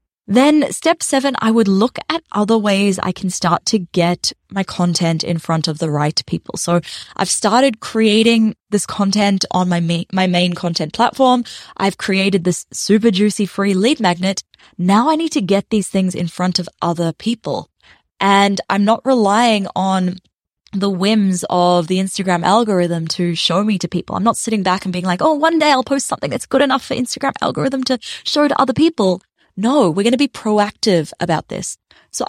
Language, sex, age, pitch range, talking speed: English, female, 10-29, 180-235 Hz, 190 wpm